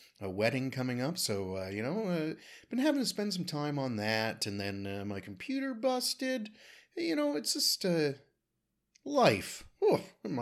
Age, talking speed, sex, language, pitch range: 30-49, 180 wpm, male, English, 105-160 Hz